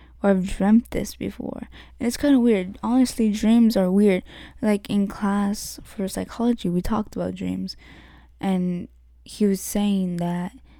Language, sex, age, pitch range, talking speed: English, female, 10-29, 185-220 Hz, 155 wpm